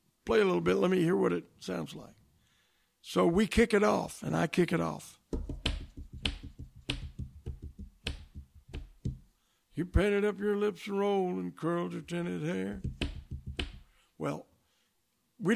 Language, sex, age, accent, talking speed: English, male, 60-79, American, 135 wpm